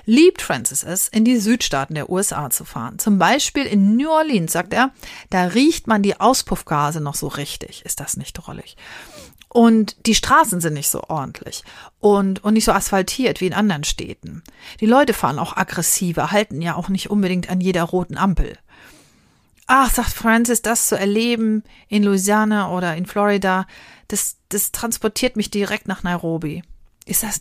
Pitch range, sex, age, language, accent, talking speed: 180-220 Hz, female, 40-59, English, German, 175 wpm